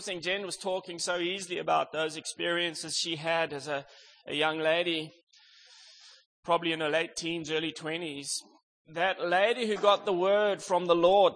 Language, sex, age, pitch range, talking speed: English, male, 20-39, 155-190 Hz, 170 wpm